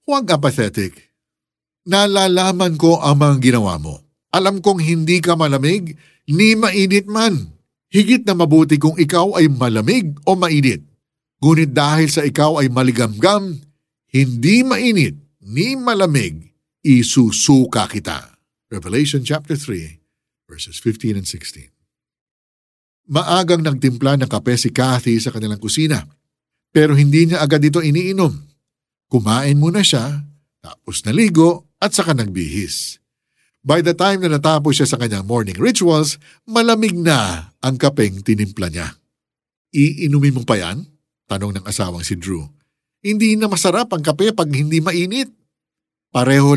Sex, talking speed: male, 135 wpm